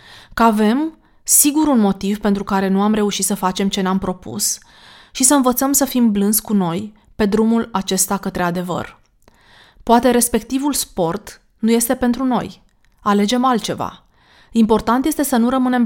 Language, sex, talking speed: Romanian, female, 160 wpm